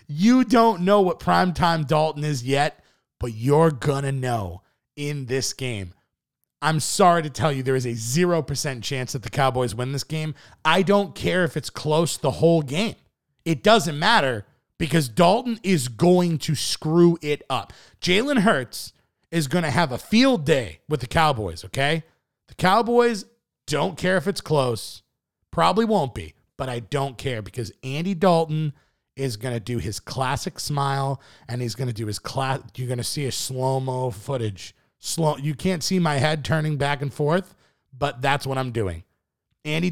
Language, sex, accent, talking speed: English, male, American, 180 wpm